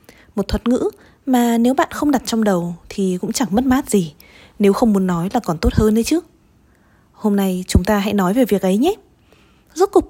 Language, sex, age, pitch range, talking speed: Vietnamese, female, 20-39, 200-260 Hz, 225 wpm